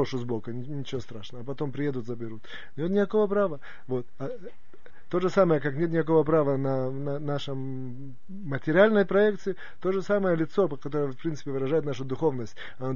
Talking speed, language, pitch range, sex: 155 wpm, Russian, 140-180 Hz, male